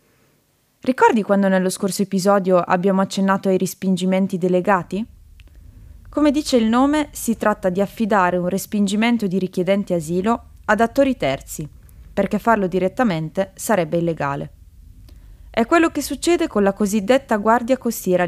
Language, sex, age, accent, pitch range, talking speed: Italian, female, 20-39, native, 180-230 Hz, 130 wpm